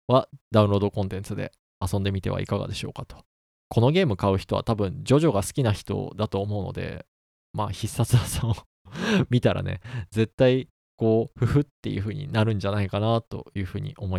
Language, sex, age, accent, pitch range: Japanese, male, 20-39, native, 100-125 Hz